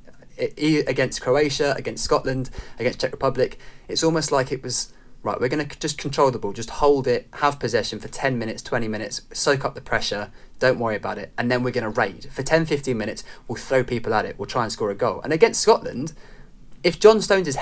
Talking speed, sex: 220 wpm, male